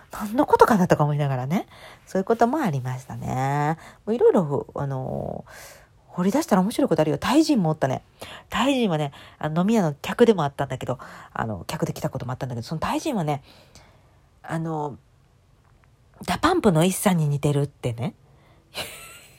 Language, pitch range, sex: Japanese, 150-220 Hz, female